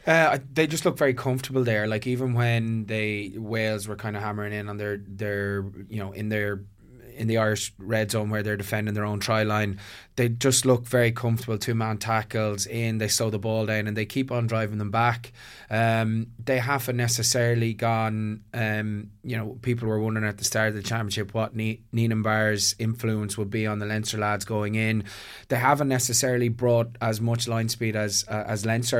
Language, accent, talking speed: English, Irish, 205 wpm